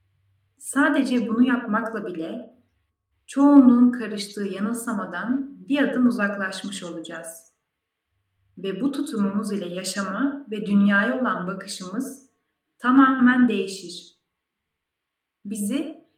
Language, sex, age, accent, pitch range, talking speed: Turkish, female, 30-49, native, 180-240 Hz, 85 wpm